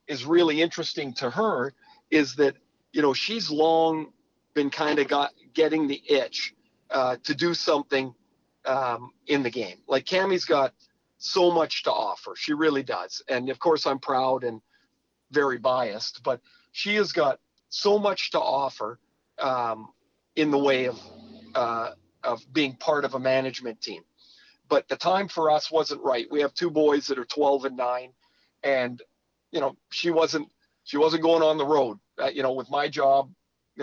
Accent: American